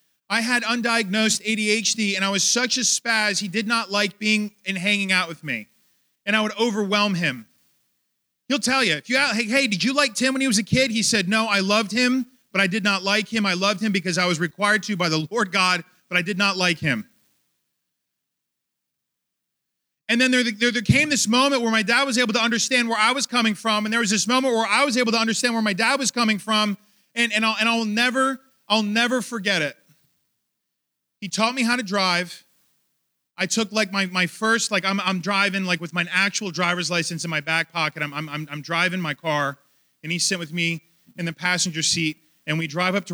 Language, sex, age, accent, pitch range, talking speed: English, male, 30-49, American, 165-220 Hz, 225 wpm